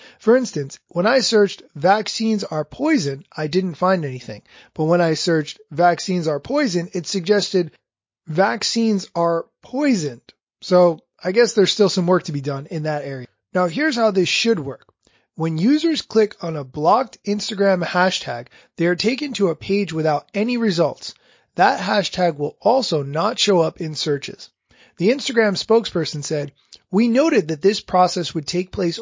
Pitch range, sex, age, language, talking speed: 155-215 Hz, male, 30-49, English, 170 wpm